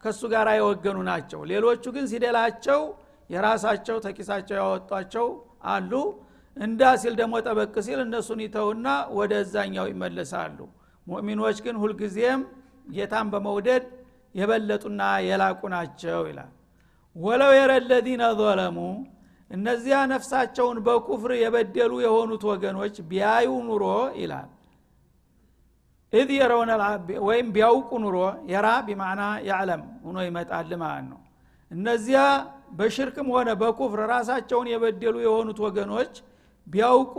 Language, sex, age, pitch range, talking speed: Amharic, male, 60-79, 210-250 Hz, 100 wpm